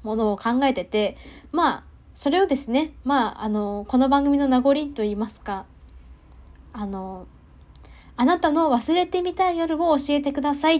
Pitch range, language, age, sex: 210-290 Hz, Japanese, 10-29, female